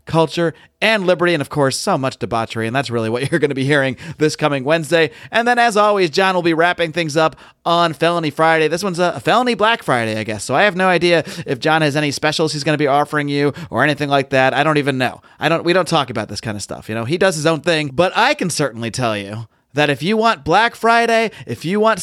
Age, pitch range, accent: 30-49, 140-195 Hz, American